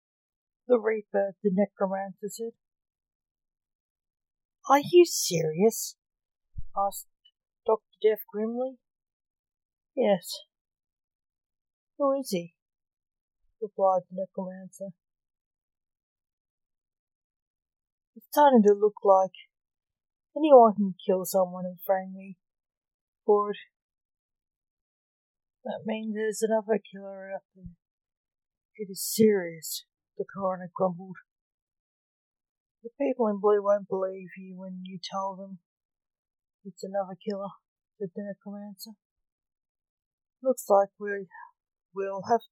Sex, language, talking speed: female, English, 95 wpm